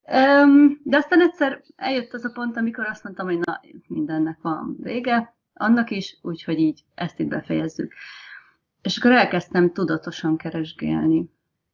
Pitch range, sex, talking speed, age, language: 160-185 Hz, female, 140 wpm, 30-49, Hungarian